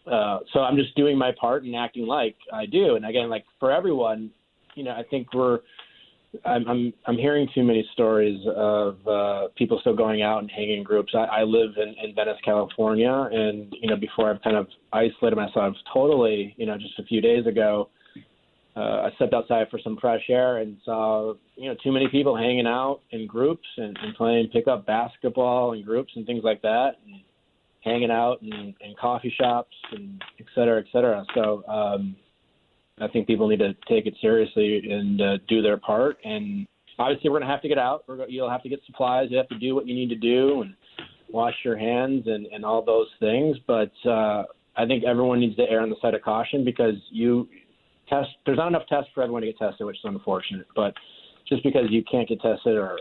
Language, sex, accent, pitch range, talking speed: English, male, American, 110-130 Hz, 215 wpm